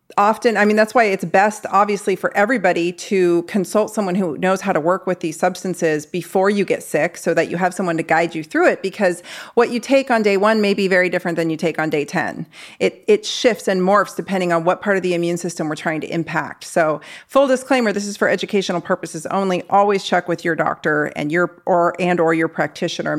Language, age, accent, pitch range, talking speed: English, 40-59, American, 170-210 Hz, 235 wpm